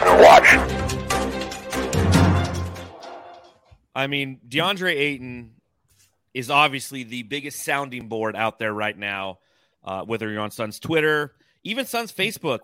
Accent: American